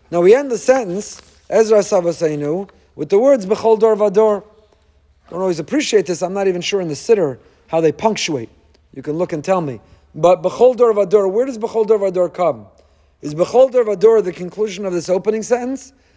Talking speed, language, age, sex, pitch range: 185 wpm, English, 40-59, male, 180-225 Hz